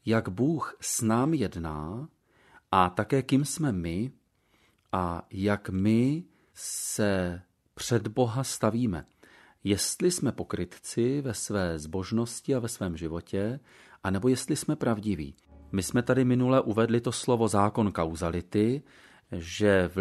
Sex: male